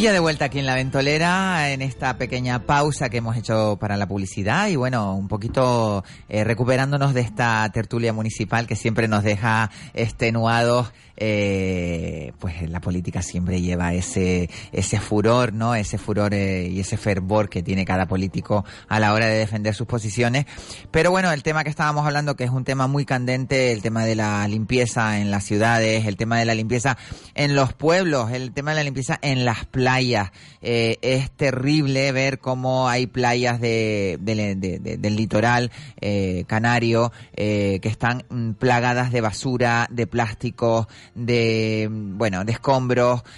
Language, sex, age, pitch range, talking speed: Spanish, male, 30-49, 105-130 Hz, 175 wpm